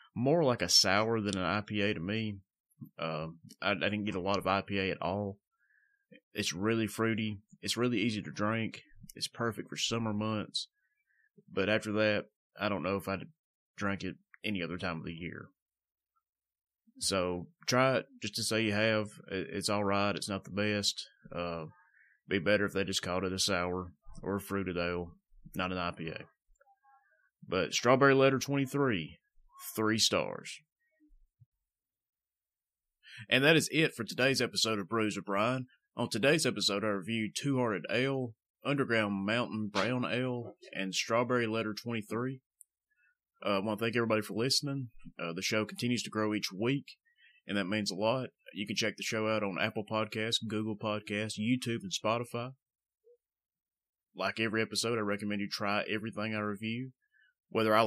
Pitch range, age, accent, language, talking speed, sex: 100-120 Hz, 30-49, American, English, 165 wpm, male